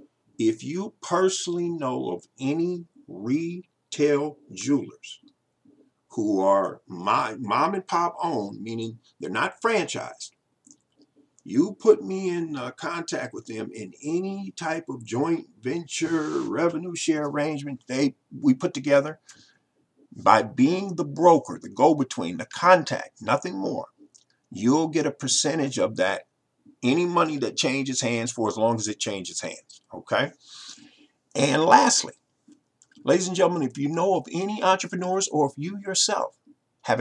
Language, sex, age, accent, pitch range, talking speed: English, male, 50-69, American, 140-185 Hz, 140 wpm